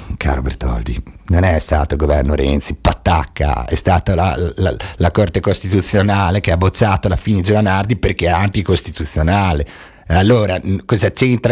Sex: male